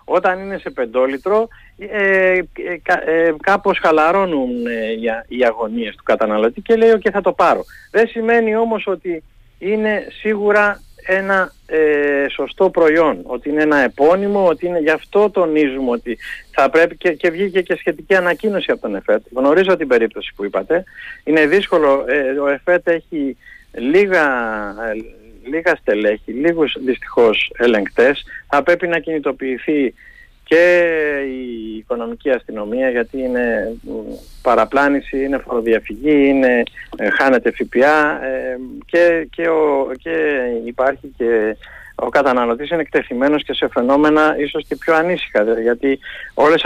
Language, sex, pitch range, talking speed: Greek, male, 130-185 Hz, 130 wpm